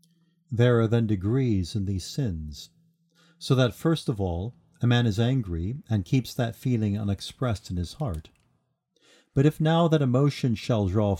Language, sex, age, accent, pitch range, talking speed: English, male, 50-69, American, 100-130 Hz, 165 wpm